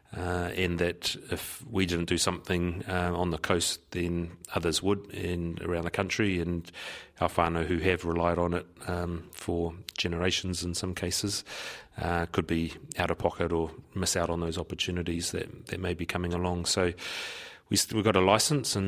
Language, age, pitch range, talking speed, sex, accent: English, 30-49, 85-95 Hz, 190 wpm, male, British